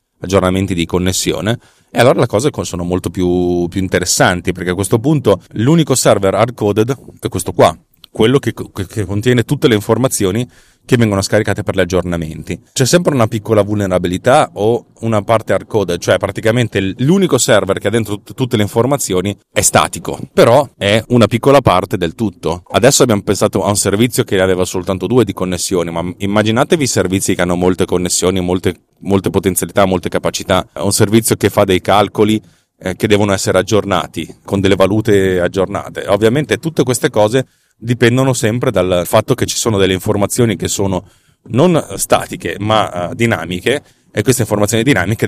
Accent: native